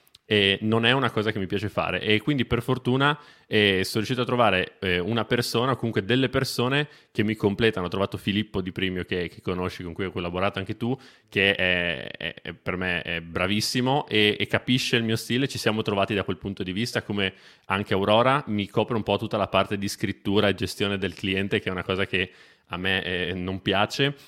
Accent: native